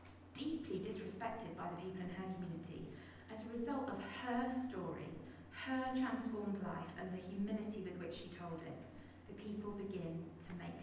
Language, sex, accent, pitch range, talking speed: English, female, British, 165-220 Hz, 165 wpm